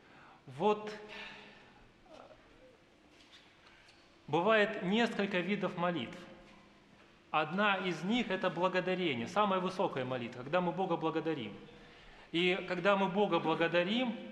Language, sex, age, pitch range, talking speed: Russian, male, 30-49, 175-200 Hz, 90 wpm